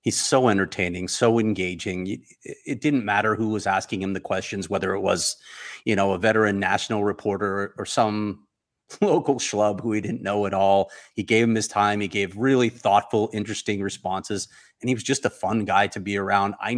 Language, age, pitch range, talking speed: English, 30-49, 105-120 Hz, 195 wpm